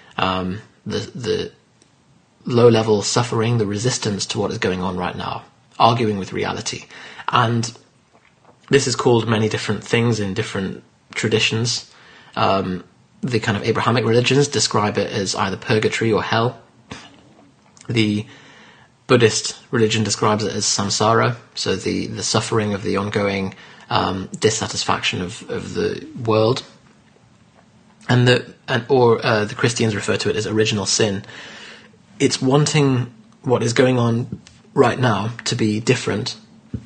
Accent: British